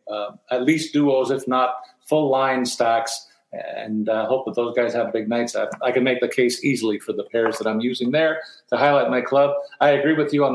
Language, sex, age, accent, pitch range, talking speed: English, male, 40-59, American, 120-140 Hz, 240 wpm